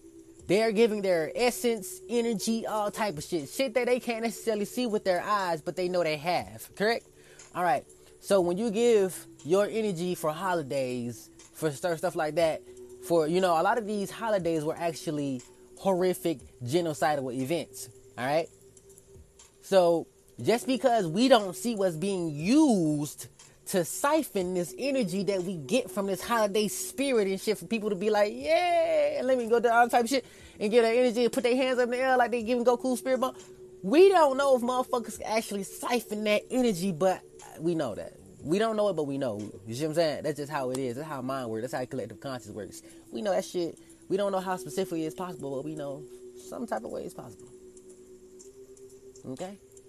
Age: 20-39